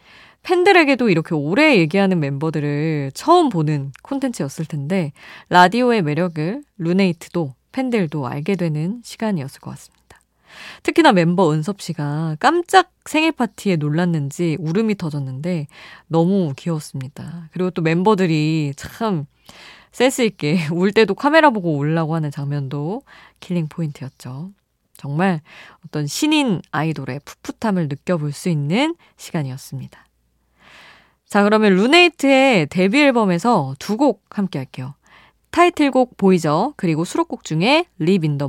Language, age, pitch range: Korean, 20-39, 150-230 Hz